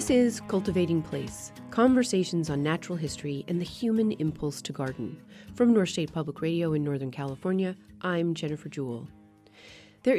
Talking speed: 155 wpm